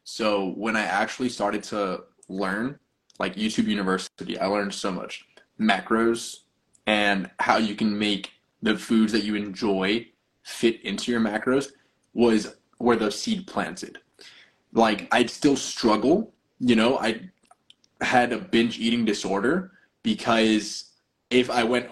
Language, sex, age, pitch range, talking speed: English, male, 20-39, 105-125 Hz, 135 wpm